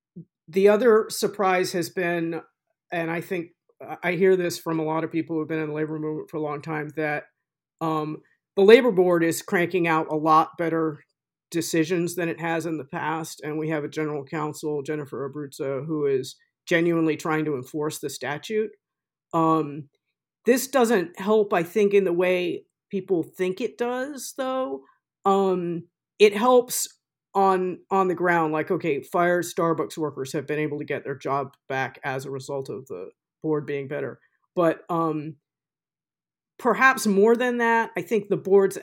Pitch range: 150-185 Hz